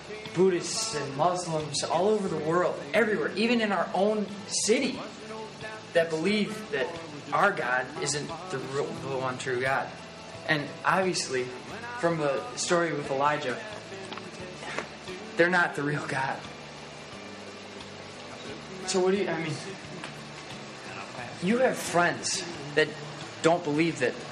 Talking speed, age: 125 wpm, 20-39